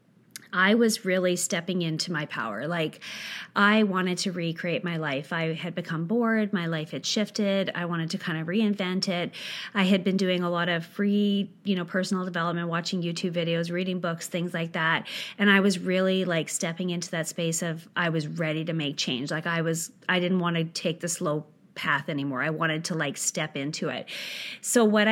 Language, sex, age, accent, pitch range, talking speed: English, female, 30-49, American, 165-200 Hz, 205 wpm